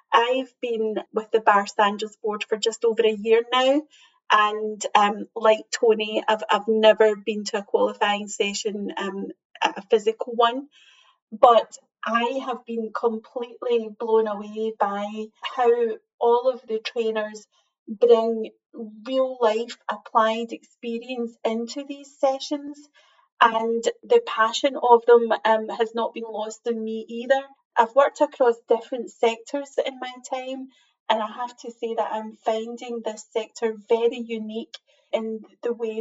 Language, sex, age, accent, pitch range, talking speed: English, female, 30-49, British, 220-255 Hz, 140 wpm